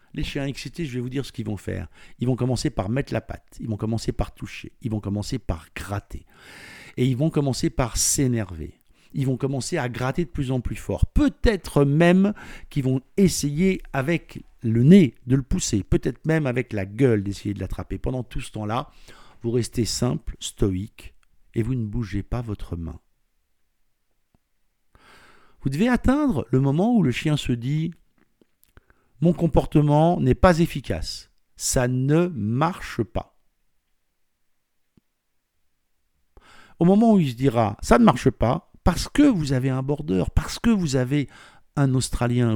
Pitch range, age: 105-150 Hz, 60-79